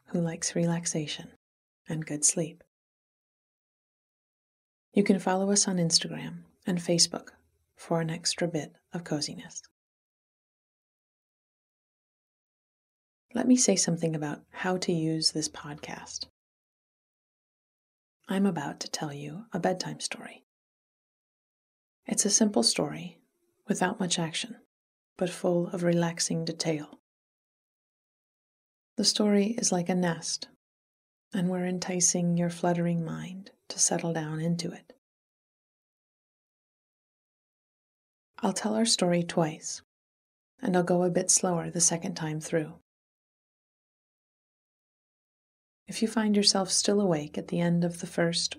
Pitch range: 160-190 Hz